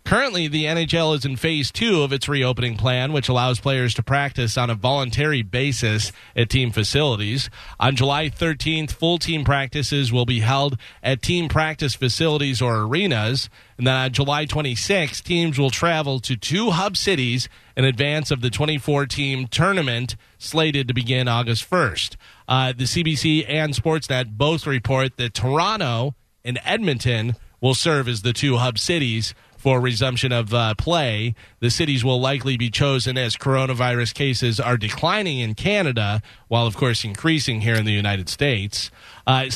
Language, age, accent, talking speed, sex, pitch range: English, 40-59, American, 160 wpm, male, 120-150 Hz